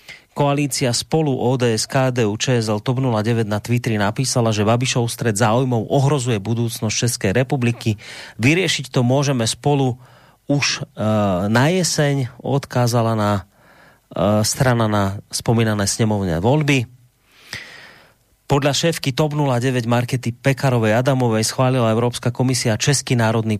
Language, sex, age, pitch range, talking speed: Slovak, male, 30-49, 110-135 Hz, 115 wpm